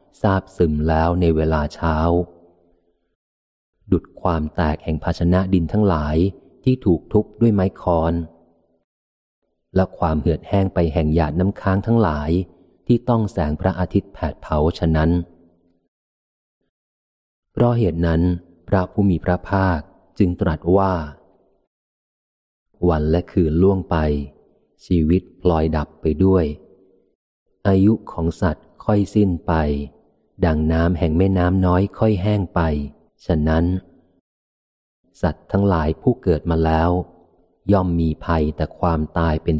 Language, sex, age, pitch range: Thai, male, 30-49, 80-95 Hz